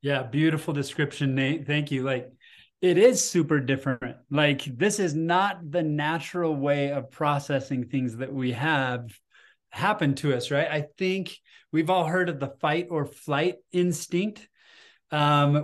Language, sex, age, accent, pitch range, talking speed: English, male, 20-39, American, 130-160 Hz, 155 wpm